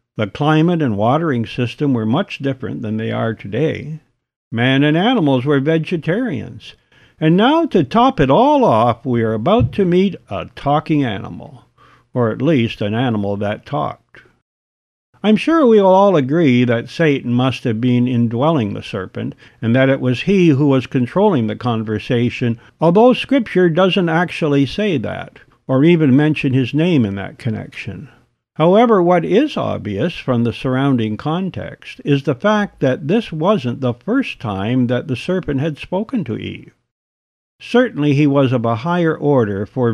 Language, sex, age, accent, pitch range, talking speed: English, male, 60-79, American, 115-165 Hz, 165 wpm